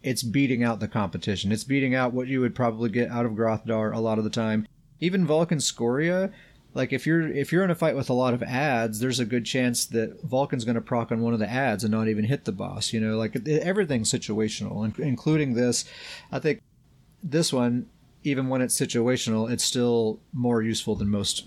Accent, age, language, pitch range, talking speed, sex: American, 30-49, English, 115-150 Hz, 220 wpm, male